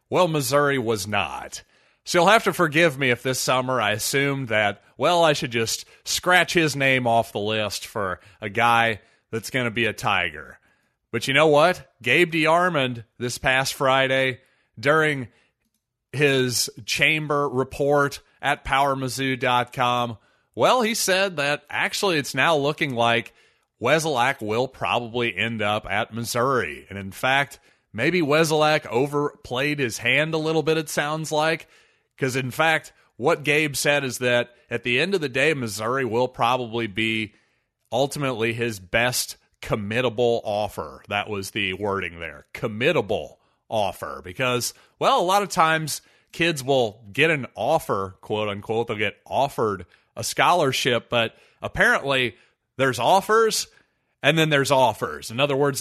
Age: 30-49